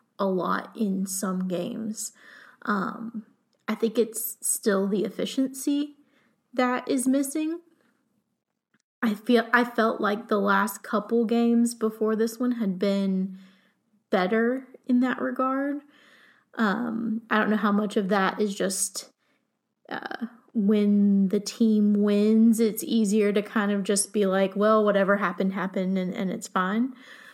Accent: American